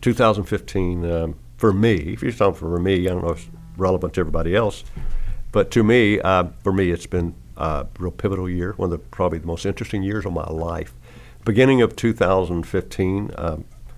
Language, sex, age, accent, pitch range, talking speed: English, male, 60-79, American, 85-100 Hz, 190 wpm